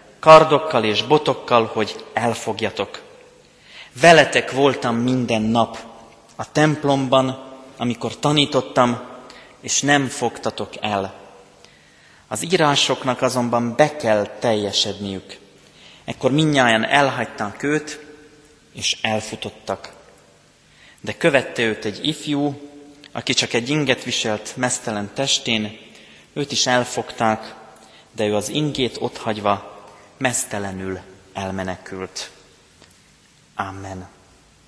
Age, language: 30-49, Hungarian